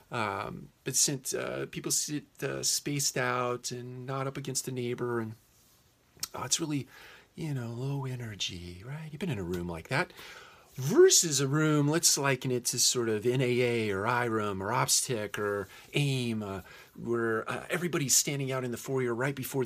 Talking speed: 175 wpm